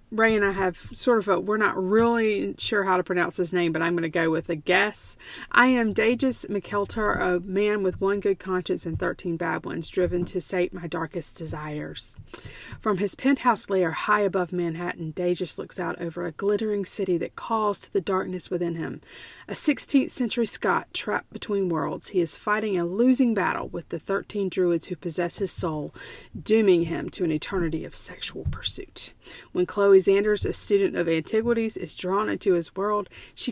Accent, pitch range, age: American, 175-215 Hz, 40-59